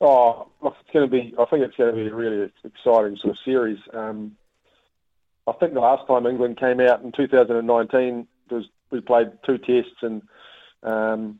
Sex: male